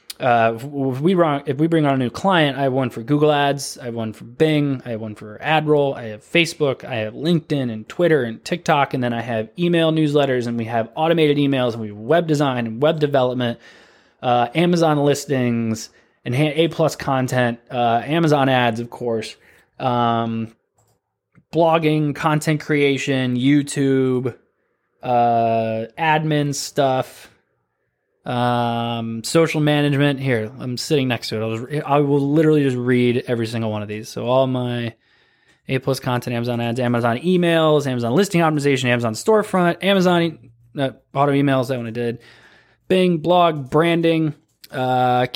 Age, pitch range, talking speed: 20-39, 120-155 Hz, 155 wpm